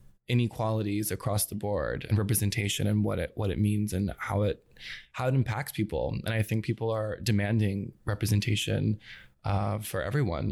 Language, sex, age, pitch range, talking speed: English, male, 20-39, 105-115 Hz, 165 wpm